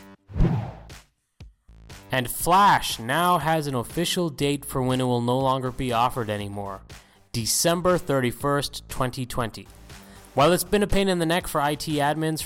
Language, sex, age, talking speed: English, male, 20-39, 145 wpm